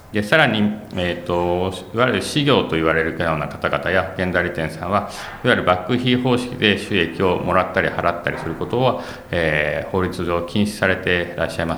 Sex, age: male, 40-59